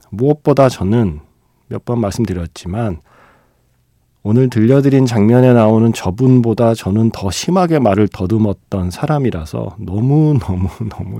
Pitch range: 95-130 Hz